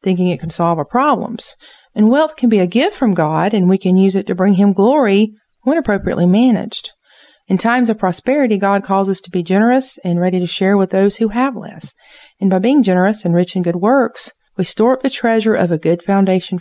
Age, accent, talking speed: 40-59, American, 230 wpm